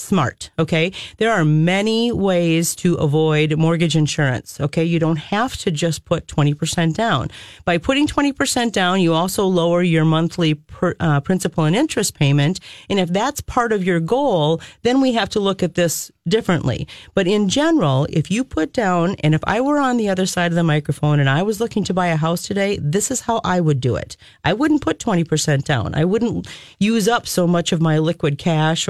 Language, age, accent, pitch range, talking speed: English, 40-59, American, 155-210 Hz, 200 wpm